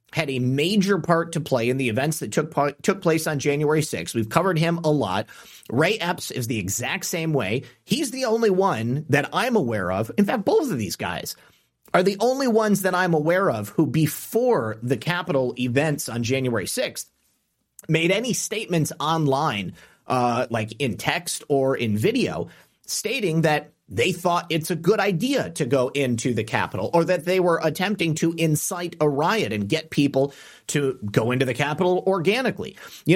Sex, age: male, 30-49